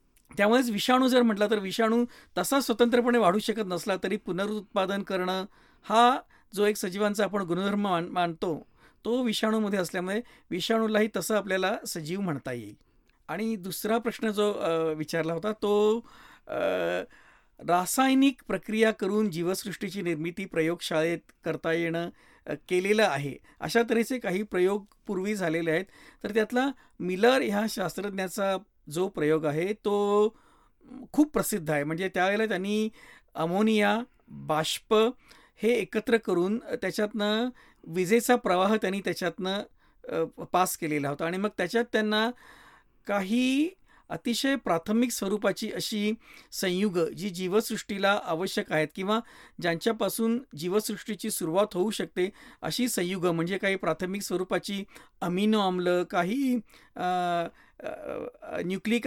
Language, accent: Marathi, native